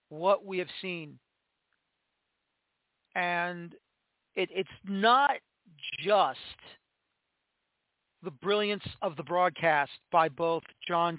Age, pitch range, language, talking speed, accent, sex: 40-59, 160-185 Hz, English, 85 wpm, American, male